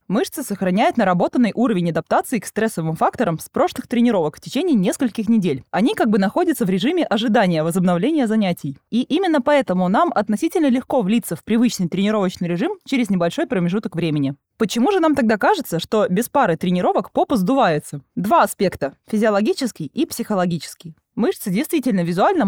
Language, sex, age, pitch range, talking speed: Russian, female, 20-39, 180-260 Hz, 155 wpm